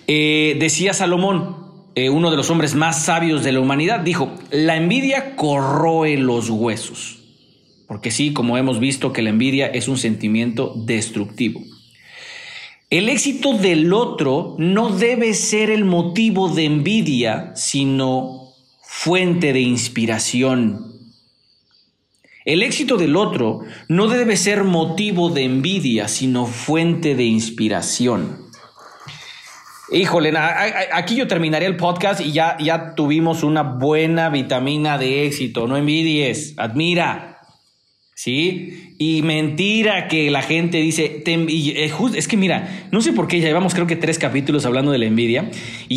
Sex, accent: male, Mexican